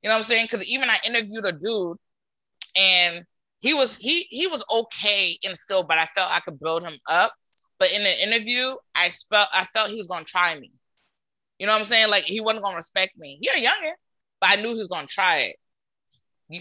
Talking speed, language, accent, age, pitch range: 240 wpm, English, American, 20-39, 175-230 Hz